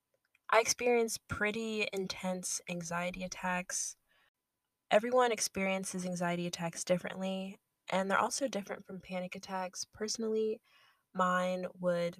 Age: 10-29